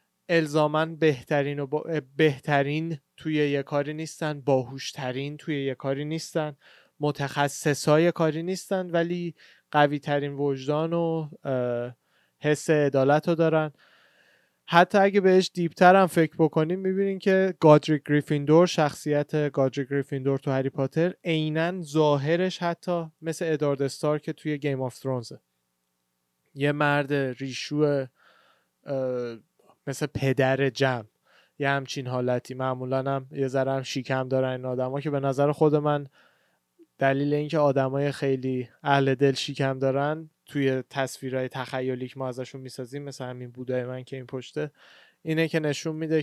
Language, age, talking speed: Persian, 20-39, 130 wpm